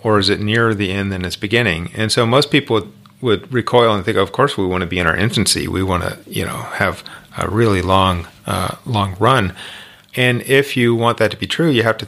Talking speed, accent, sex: 250 wpm, American, male